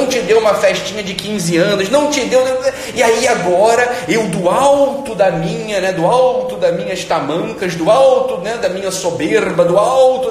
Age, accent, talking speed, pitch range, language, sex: 40-59, Brazilian, 190 wpm, 160-220 Hz, Portuguese, male